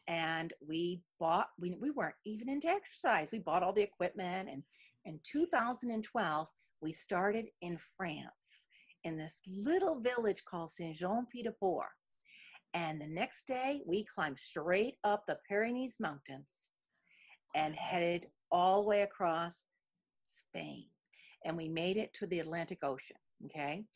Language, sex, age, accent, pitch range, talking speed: English, female, 50-69, American, 165-220 Hz, 135 wpm